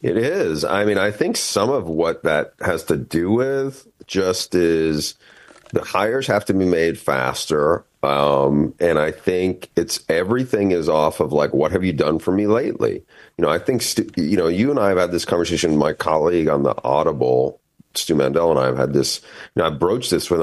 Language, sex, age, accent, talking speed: English, male, 40-59, American, 210 wpm